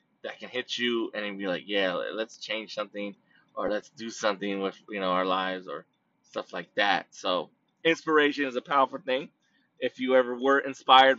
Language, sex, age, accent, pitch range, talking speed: English, male, 20-39, American, 125-185 Hz, 190 wpm